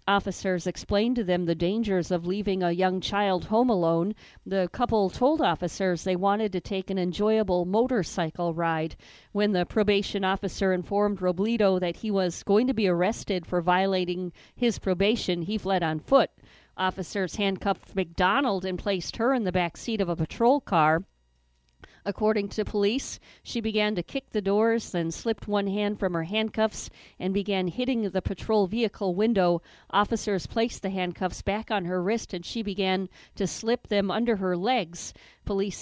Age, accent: 40-59, American